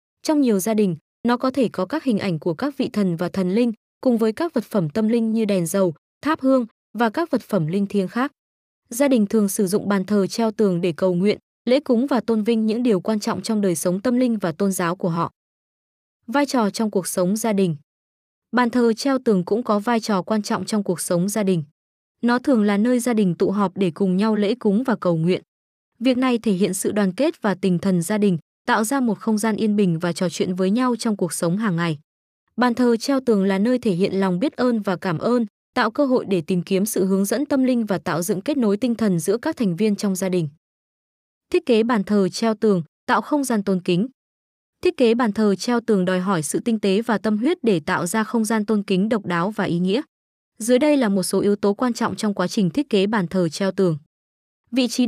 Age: 20-39